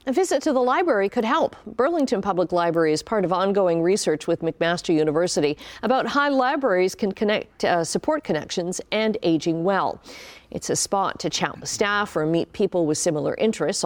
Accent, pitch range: American, 165-230 Hz